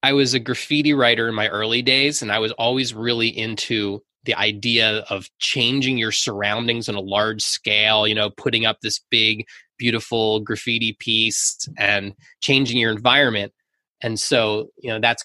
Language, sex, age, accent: English, male, 20-39, American